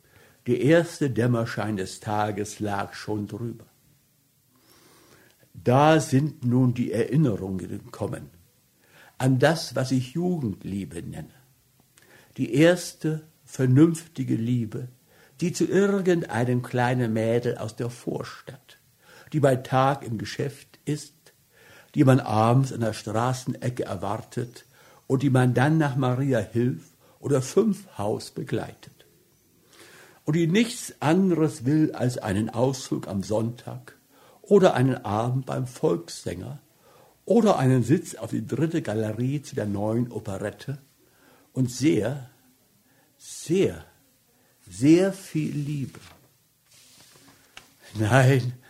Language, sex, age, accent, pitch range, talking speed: German, male, 60-79, German, 115-145 Hz, 110 wpm